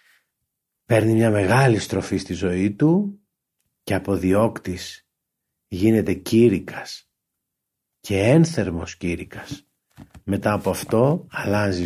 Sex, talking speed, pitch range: male, 95 wpm, 95-135 Hz